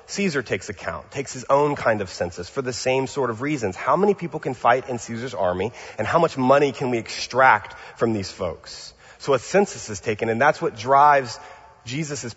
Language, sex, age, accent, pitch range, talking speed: English, male, 30-49, American, 115-155 Hz, 210 wpm